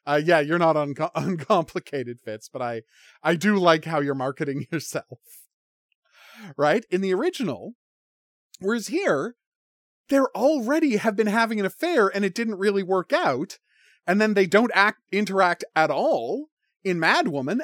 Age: 30-49